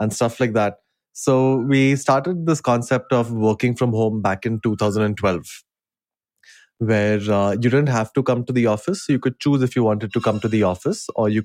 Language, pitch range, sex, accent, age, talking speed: English, 105-120 Hz, male, Indian, 20-39, 210 wpm